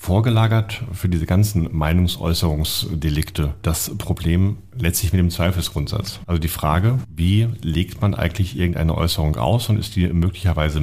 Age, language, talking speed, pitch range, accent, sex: 40-59, German, 140 wpm, 80-90 Hz, German, male